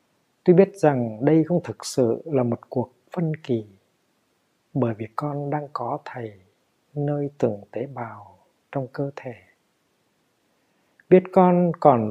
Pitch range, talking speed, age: 120-165 Hz, 140 wpm, 60-79